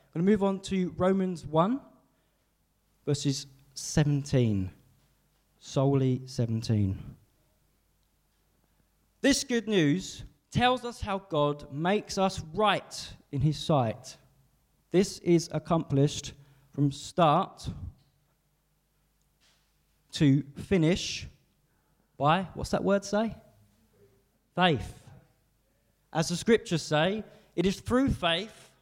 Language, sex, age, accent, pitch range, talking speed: English, male, 20-39, British, 125-165 Hz, 95 wpm